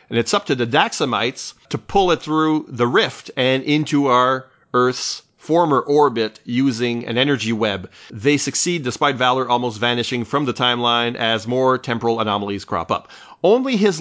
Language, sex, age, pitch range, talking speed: English, male, 40-59, 115-150 Hz, 165 wpm